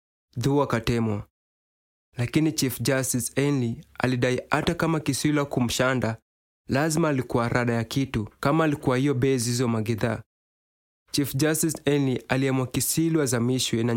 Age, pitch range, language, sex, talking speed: 20-39, 120-140 Hz, Swahili, male, 125 wpm